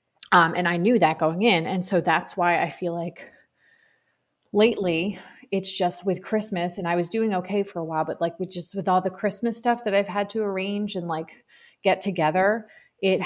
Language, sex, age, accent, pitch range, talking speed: English, female, 30-49, American, 175-215 Hz, 210 wpm